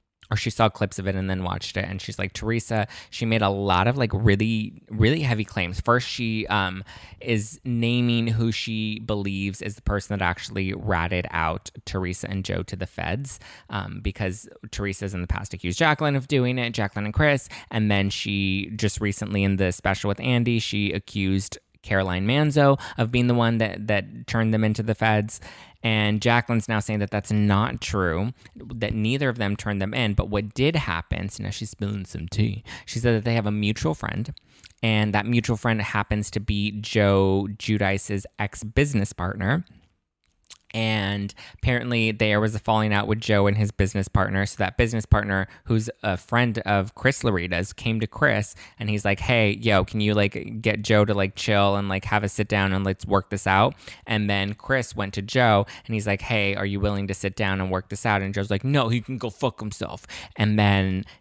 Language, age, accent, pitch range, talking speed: English, 20-39, American, 100-115 Hz, 205 wpm